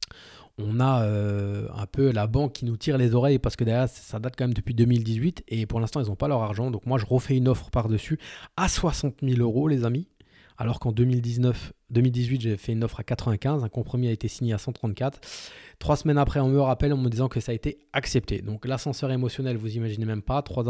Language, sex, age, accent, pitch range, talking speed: French, male, 20-39, French, 110-130 Hz, 235 wpm